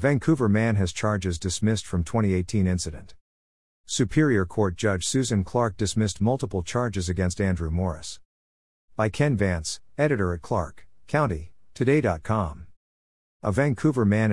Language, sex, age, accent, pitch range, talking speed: English, male, 50-69, American, 90-115 Hz, 125 wpm